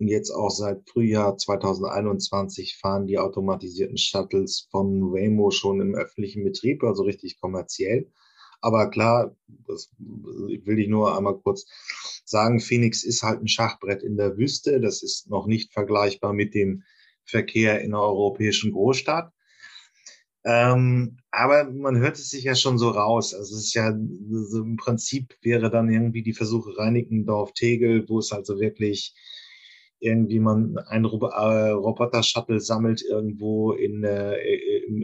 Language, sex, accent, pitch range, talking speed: German, male, German, 105-120 Hz, 140 wpm